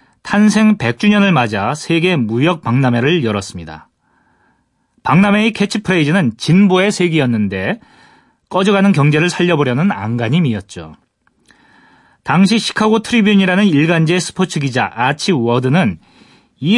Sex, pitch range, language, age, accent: male, 135-200 Hz, Korean, 30-49, native